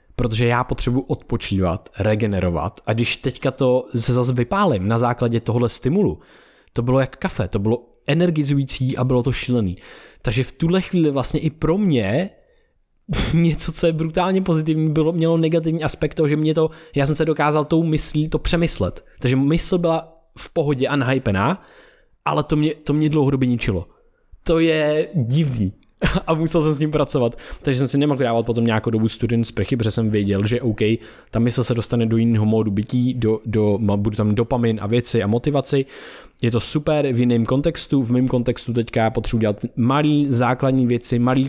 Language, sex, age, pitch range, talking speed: Czech, male, 20-39, 115-150 Hz, 185 wpm